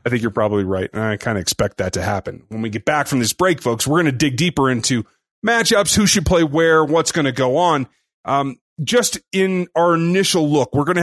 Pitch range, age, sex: 125-175 Hz, 30-49, male